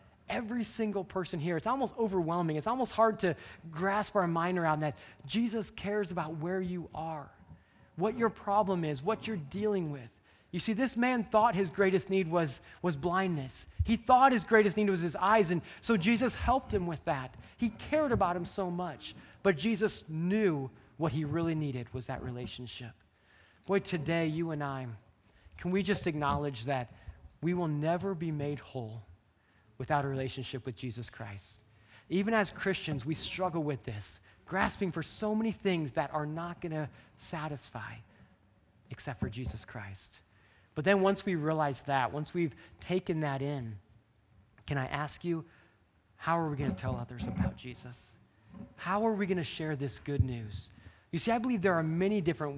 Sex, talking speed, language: male, 180 wpm, English